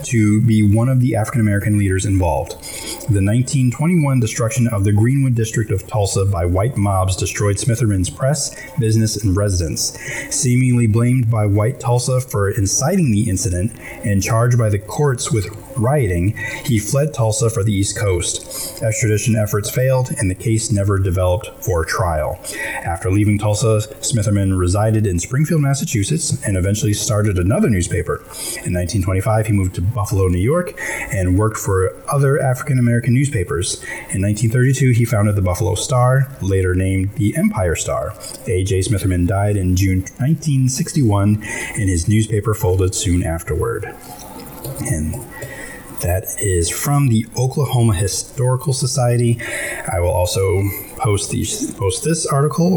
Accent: American